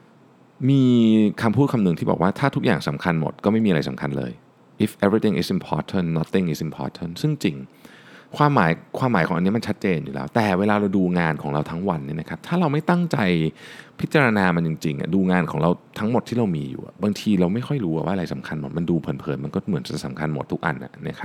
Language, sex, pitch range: Thai, male, 80-110 Hz